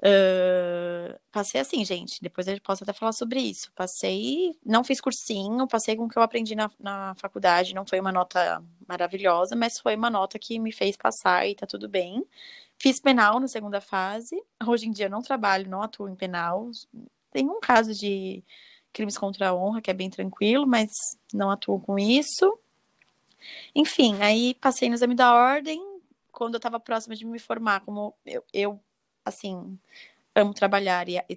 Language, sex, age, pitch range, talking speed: Portuguese, female, 20-39, 190-235 Hz, 180 wpm